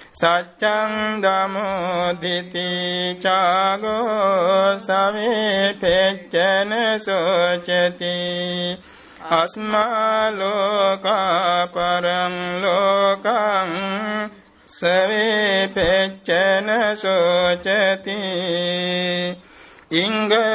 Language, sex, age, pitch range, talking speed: Vietnamese, male, 60-79, 180-205 Hz, 30 wpm